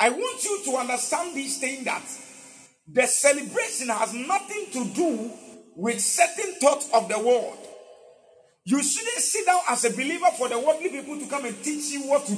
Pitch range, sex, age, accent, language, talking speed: 230-335 Hz, male, 40-59, Nigerian, English, 185 wpm